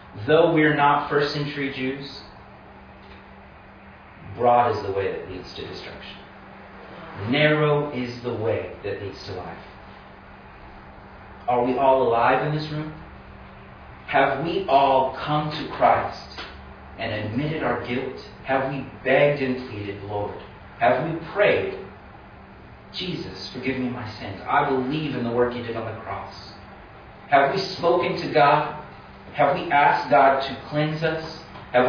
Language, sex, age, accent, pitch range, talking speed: English, male, 40-59, American, 105-145 Hz, 145 wpm